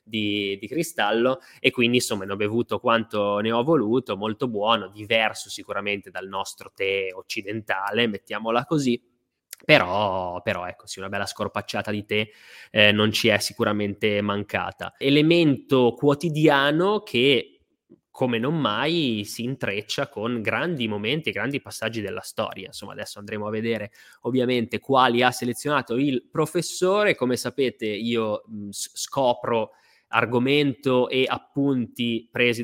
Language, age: Italian, 20-39